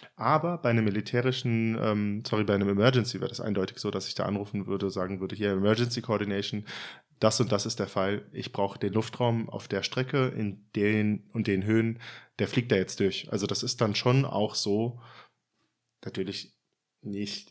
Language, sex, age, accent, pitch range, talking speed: German, male, 20-39, German, 100-120 Hz, 190 wpm